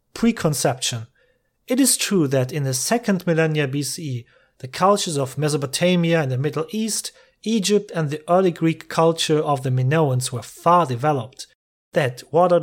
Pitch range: 130-180 Hz